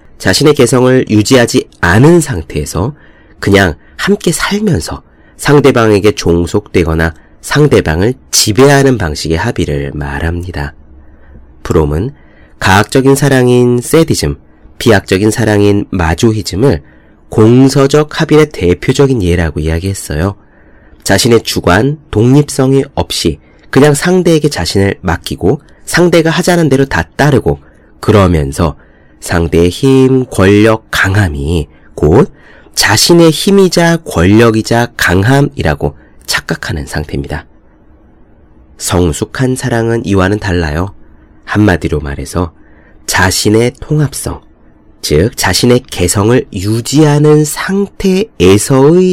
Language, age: Korean, 30-49